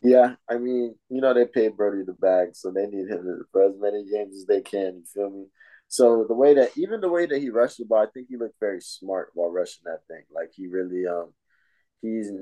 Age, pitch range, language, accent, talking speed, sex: 20-39, 95-145 Hz, English, American, 245 wpm, male